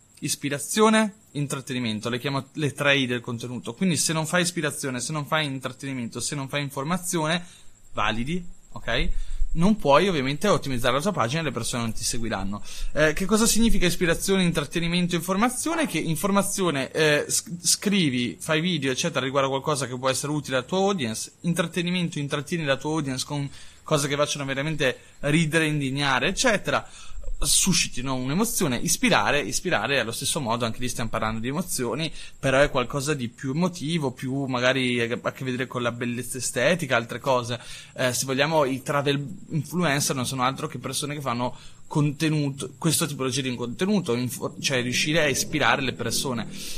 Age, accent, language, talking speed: 20-39, native, Italian, 165 wpm